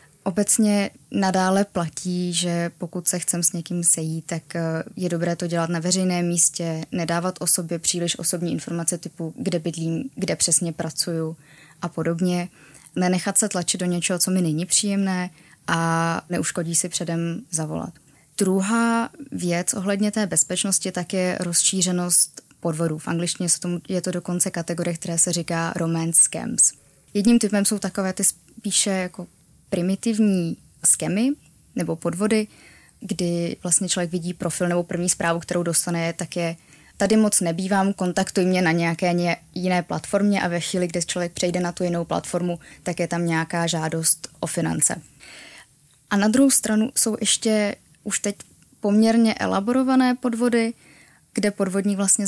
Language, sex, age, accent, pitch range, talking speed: Czech, female, 20-39, native, 170-195 Hz, 150 wpm